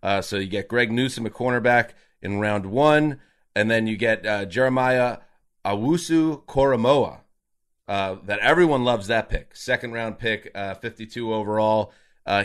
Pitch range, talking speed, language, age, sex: 110-150 Hz, 150 wpm, English, 30-49, male